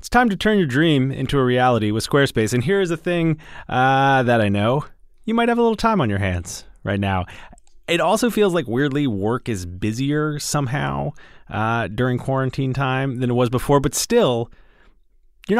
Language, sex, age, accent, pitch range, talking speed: English, male, 30-49, American, 110-150 Hz, 190 wpm